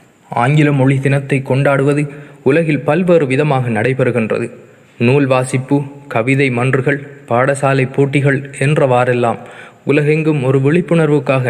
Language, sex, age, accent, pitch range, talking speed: Tamil, male, 20-39, native, 130-155 Hz, 95 wpm